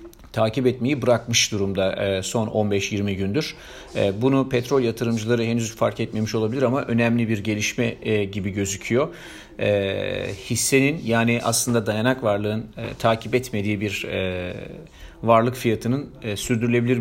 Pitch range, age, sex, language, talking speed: 105-125 Hz, 40-59, male, Turkish, 110 wpm